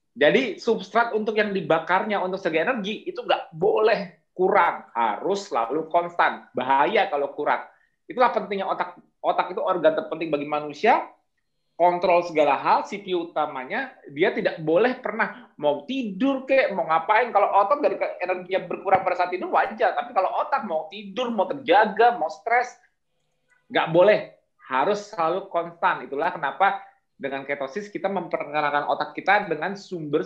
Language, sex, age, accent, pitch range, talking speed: Indonesian, male, 30-49, native, 150-210 Hz, 145 wpm